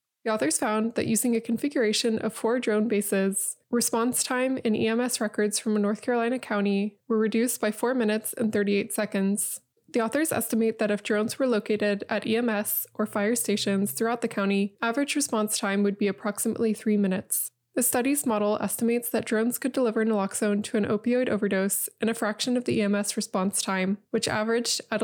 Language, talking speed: English, 185 wpm